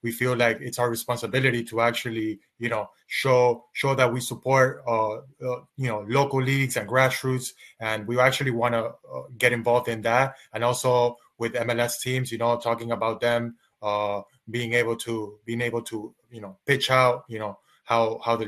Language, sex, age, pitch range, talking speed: English, male, 20-39, 115-130 Hz, 190 wpm